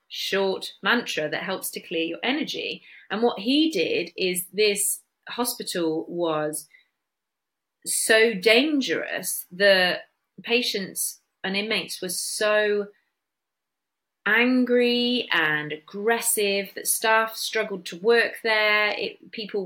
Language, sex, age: English, female, 30-49